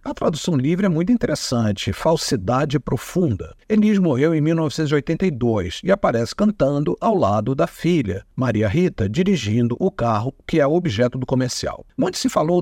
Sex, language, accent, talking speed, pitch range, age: male, Portuguese, Brazilian, 150 wpm, 125-185 Hz, 50-69